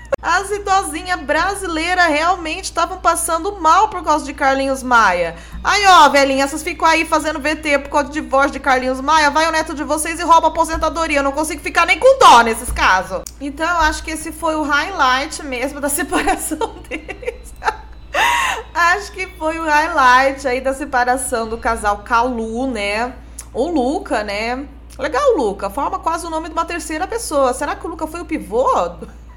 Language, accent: Portuguese, Brazilian